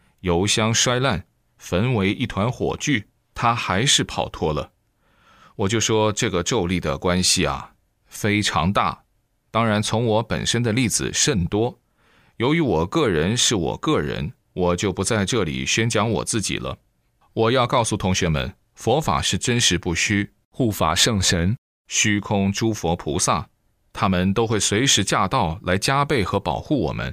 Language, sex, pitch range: Chinese, male, 90-110 Hz